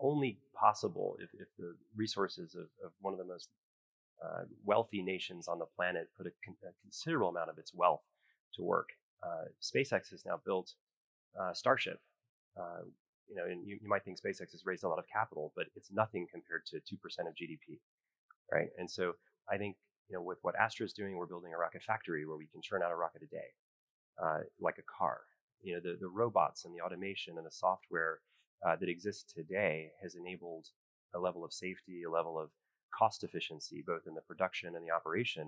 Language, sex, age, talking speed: English, male, 30-49, 210 wpm